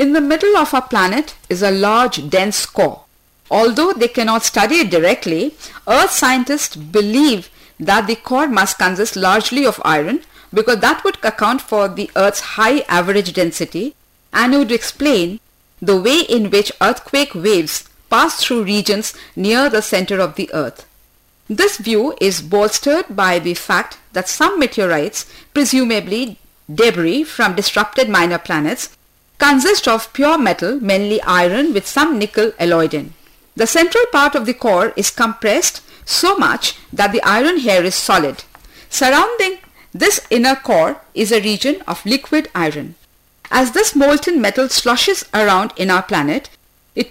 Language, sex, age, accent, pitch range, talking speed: English, female, 50-69, Indian, 205-295 Hz, 155 wpm